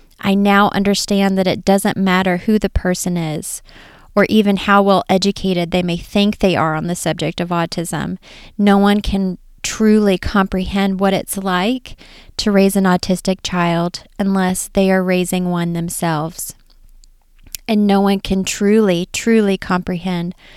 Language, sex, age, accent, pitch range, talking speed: English, female, 30-49, American, 175-200 Hz, 150 wpm